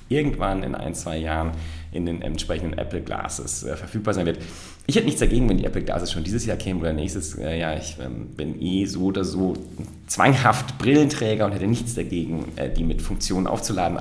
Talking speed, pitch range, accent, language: 205 wpm, 80-110 Hz, German, German